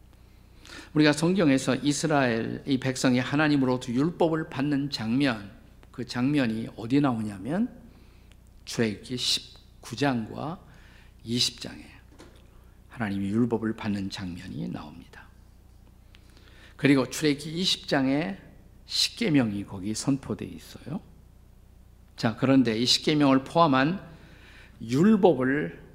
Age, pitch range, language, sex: 50-69, 110-155 Hz, Korean, male